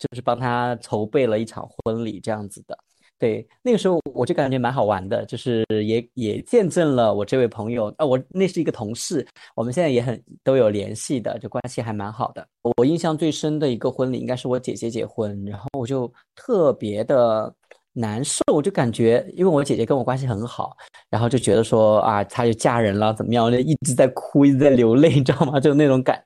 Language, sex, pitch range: Chinese, male, 120-155 Hz